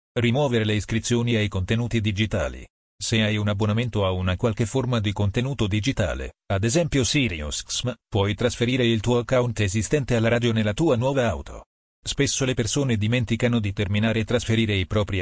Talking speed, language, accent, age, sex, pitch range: 165 wpm, Italian, native, 40-59, male, 105-125 Hz